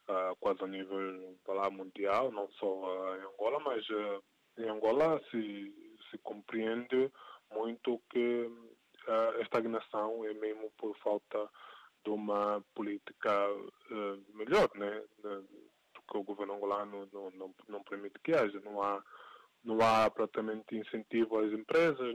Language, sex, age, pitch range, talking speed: Portuguese, male, 20-39, 100-115 Hz, 140 wpm